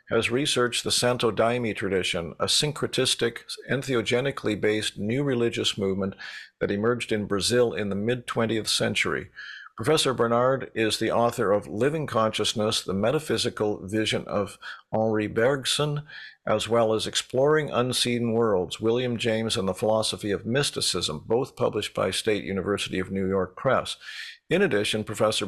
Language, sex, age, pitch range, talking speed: English, male, 50-69, 100-120 Hz, 140 wpm